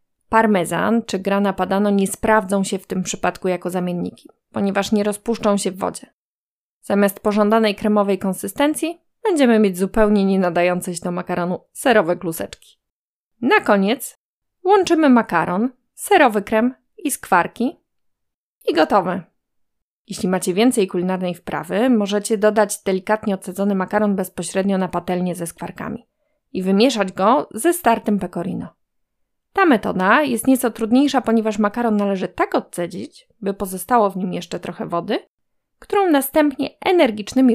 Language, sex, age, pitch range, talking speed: Polish, female, 20-39, 190-240 Hz, 130 wpm